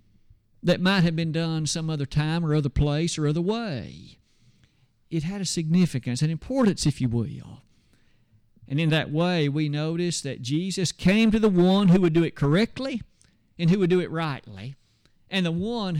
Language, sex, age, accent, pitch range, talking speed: English, male, 50-69, American, 140-185 Hz, 185 wpm